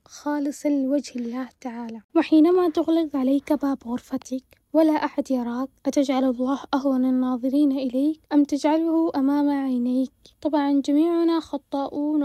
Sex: female